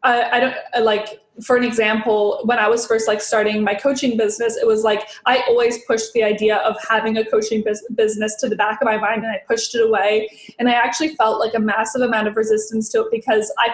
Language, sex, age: English, female, 20-39